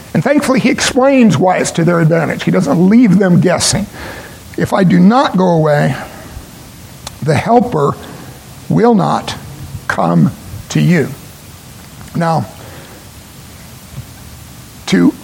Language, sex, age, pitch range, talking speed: English, male, 60-79, 165-215 Hz, 115 wpm